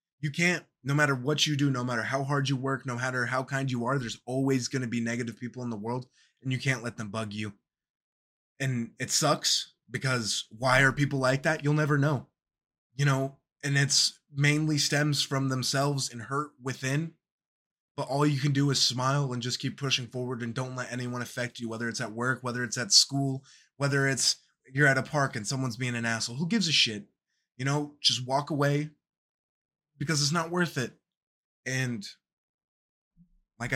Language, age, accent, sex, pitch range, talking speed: English, 20-39, American, male, 120-145 Hz, 200 wpm